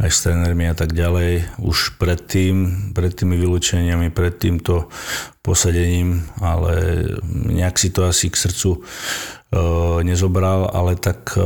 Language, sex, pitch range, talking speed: Slovak, male, 90-95 Hz, 120 wpm